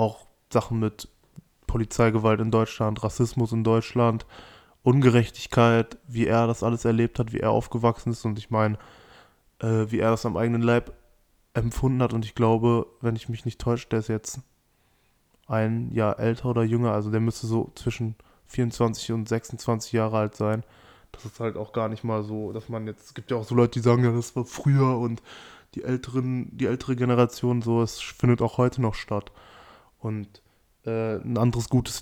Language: German